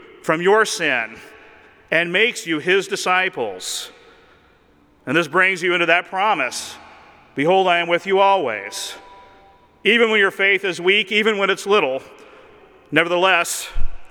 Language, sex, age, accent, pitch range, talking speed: English, male, 40-59, American, 170-220 Hz, 135 wpm